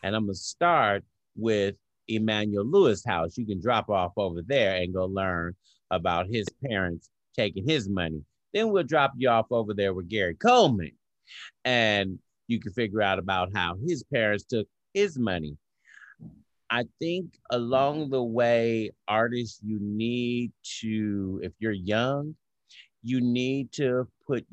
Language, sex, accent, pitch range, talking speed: English, male, American, 95-120 Hz, 150 wpm